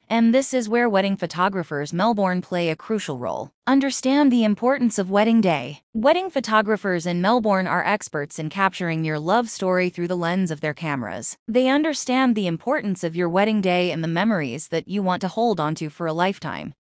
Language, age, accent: English, 20-39, American